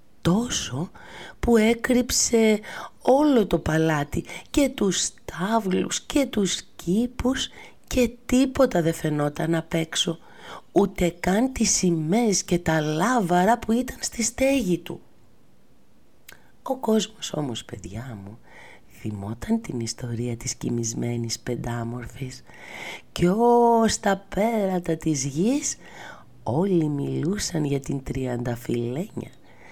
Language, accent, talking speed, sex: Greek, native, 105 wpm, female